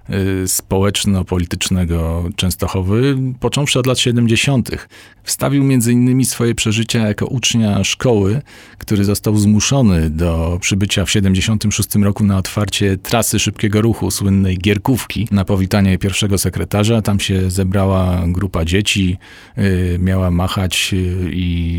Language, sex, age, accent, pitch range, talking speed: Polish, male, 40-59, native, 95-110 Hz, 115 wpm